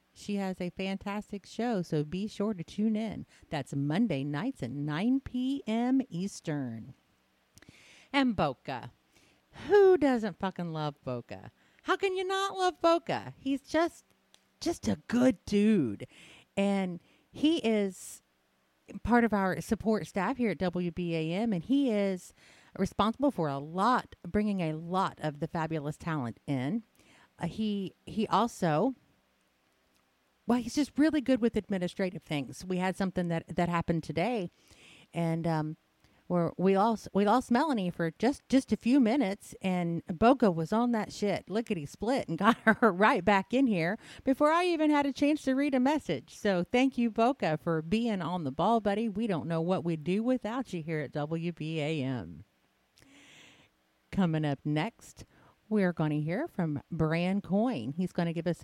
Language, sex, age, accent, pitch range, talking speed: English, female, 40-59, American, 160-235 Hz, 165 wpm